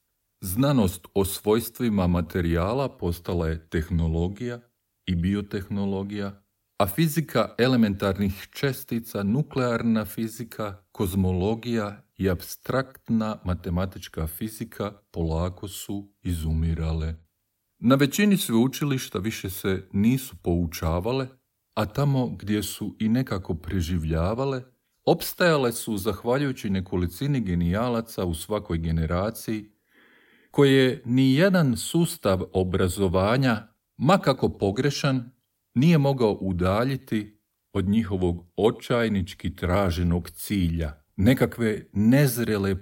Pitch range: 95-120 Hz